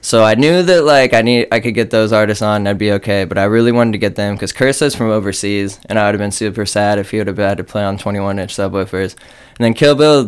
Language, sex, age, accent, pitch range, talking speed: English, male, 20-39, American, 105-145 Hz, 300 wpm